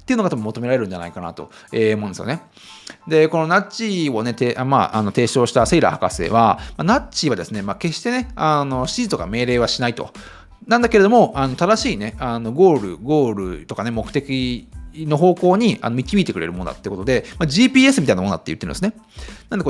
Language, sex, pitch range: Japanese, male, 110-175 Hz